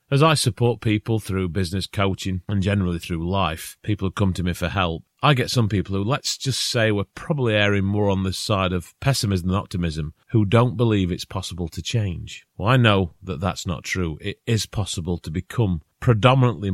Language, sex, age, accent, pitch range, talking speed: English, male, 30-49, British, 90-110 Hz, 205 wpm